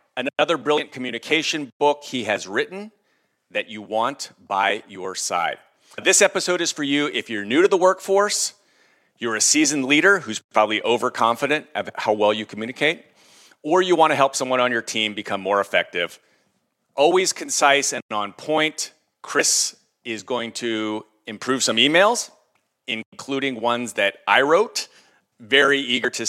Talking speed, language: 155 wpm, English